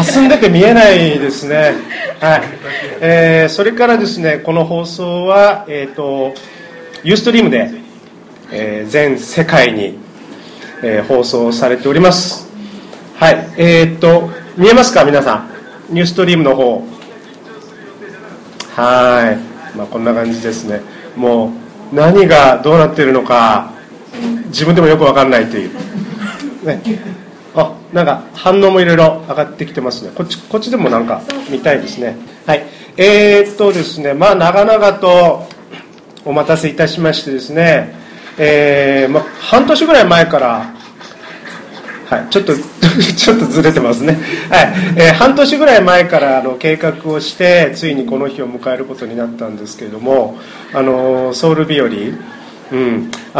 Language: Japanese